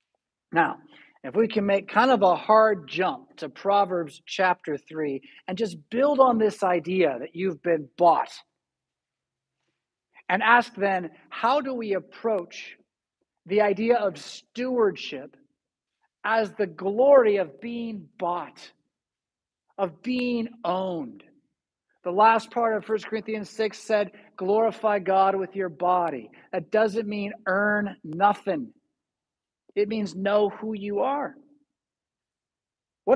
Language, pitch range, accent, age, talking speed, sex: English, 185-230 Hz, American, 50-69, 125 wpm, male